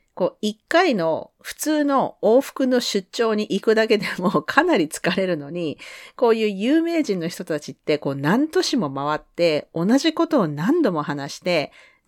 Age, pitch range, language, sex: 40-59, 155-255 Hz, Japanese, female